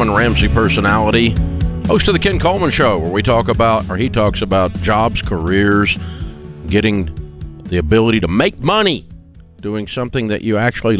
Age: 50-69